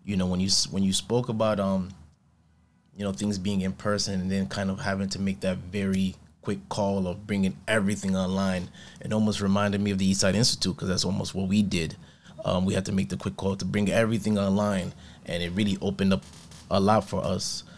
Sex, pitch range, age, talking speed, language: male, 95-120 Hz, 20-39, 220 wpm, English